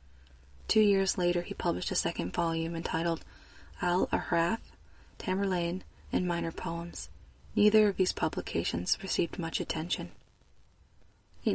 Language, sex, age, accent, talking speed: English, female, 20-39, American, 120 wpm